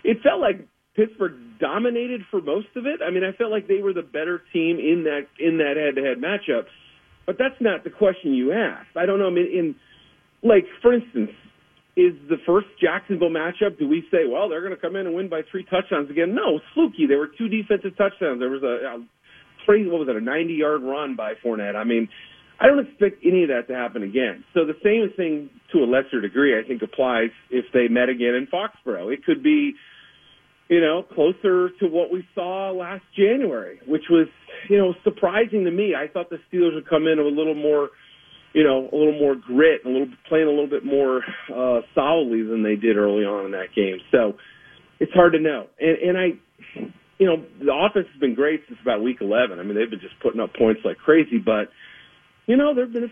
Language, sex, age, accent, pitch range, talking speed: English, male, 40-59, American, 145-205 Hz, 225 wpm